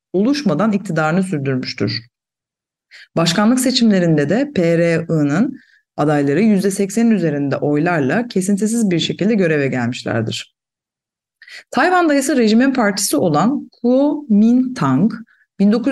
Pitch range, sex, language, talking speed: 165-245 Hz, female, Turkish, 80 wpm